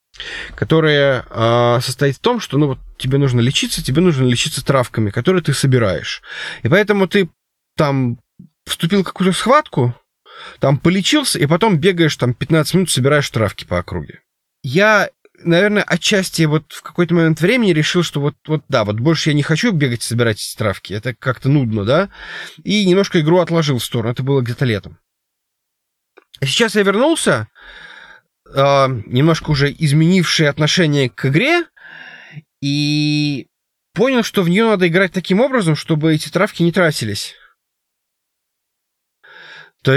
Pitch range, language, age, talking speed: 130-180 Hz, Russian, 20-39, 150 wpm